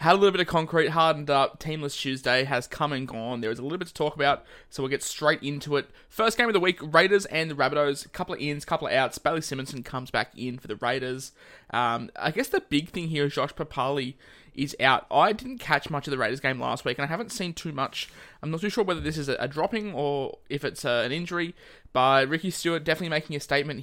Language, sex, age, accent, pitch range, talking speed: English, male, 20-39, Australian, 130-150 Hz, 255 wpm